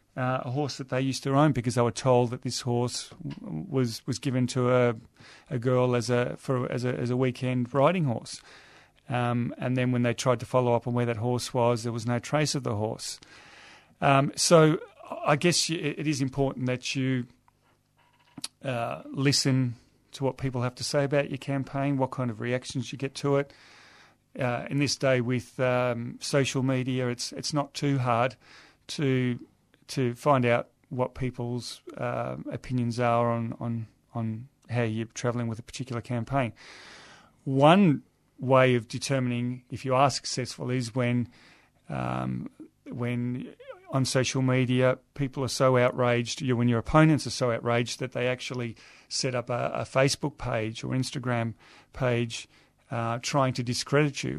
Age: 40-59